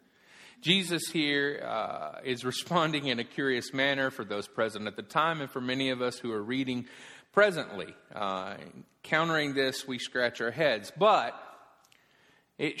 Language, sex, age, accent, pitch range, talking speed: English, male, 40-59, American, 115-165 Hz, 155 wpm